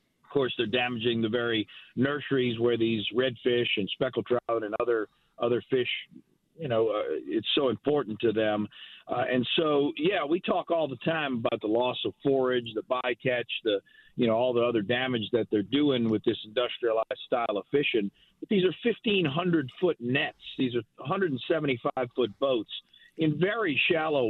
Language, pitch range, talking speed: English, 120-145 Hz, 175 wpm